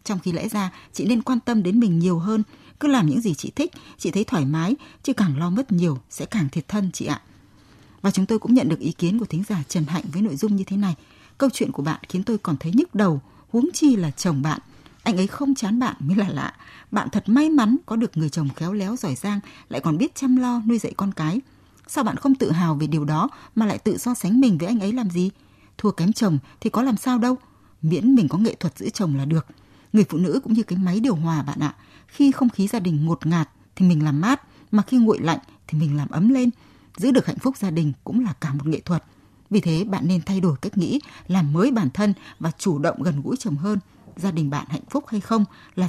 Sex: female